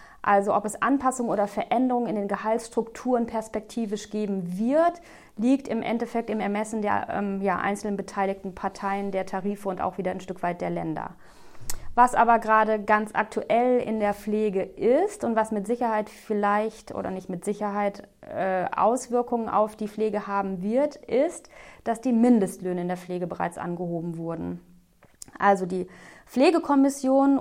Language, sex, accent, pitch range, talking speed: German, female, German, 200-235 Hz, 155 wpm